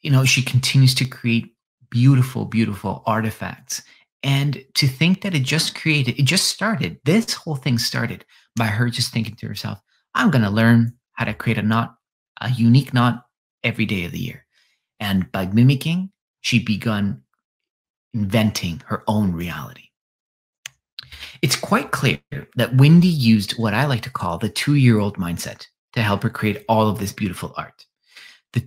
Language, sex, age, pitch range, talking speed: Turkish, male, 30-49, 105-130 Hz, 165 wpm